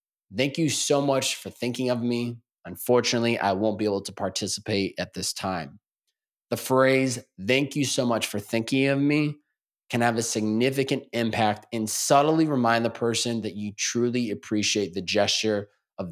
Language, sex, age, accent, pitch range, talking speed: English, male, 20-39, American, 105-125 Hz, 170 wpm